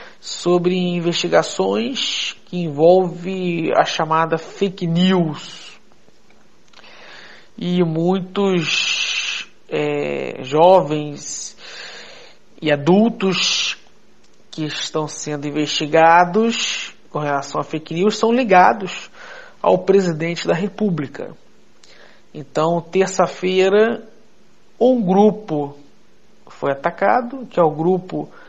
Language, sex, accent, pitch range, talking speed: Portuguese, male, Brazilian, 155-195 Hz, 80 wpm